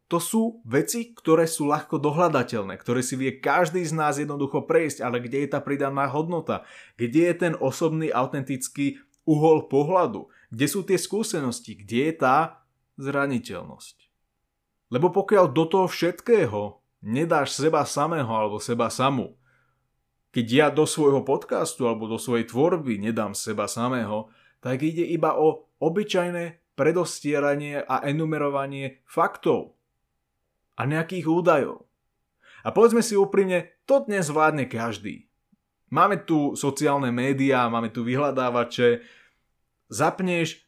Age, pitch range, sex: 20-39, 120-160 Hz, male